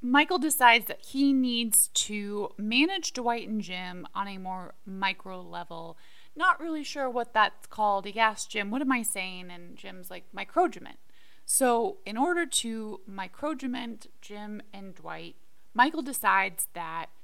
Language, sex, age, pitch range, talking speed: English, female, 20-39, 200-270 Hz, 150 wpm